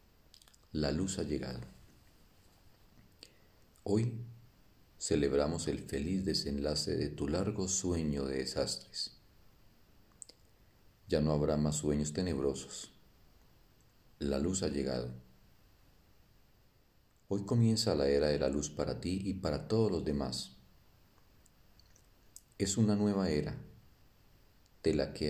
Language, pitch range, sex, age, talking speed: Spanish, 75-100 Hz, male, 50-69, 110 wpm